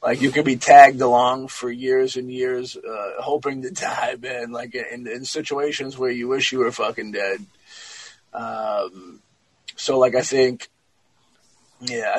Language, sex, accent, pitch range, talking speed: English, male, American, 120-150 Hz, 160 wpm